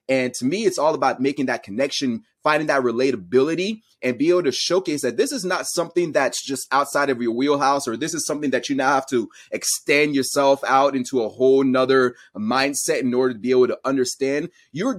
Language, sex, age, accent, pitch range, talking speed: English, male, 30-49, American, 125-180 Hz, 210 wpm